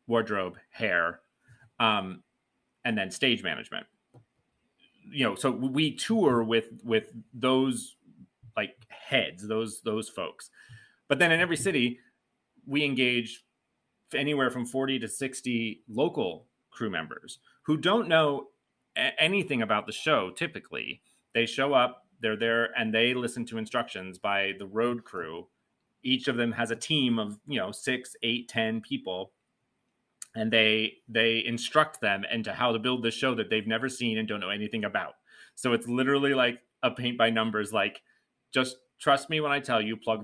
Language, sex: English, male